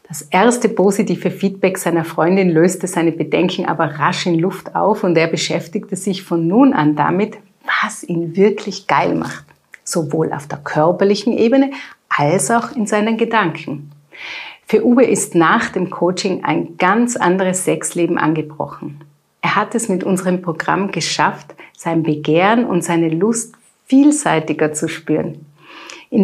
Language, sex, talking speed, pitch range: German, female, 145 wpm, 165-215 Hz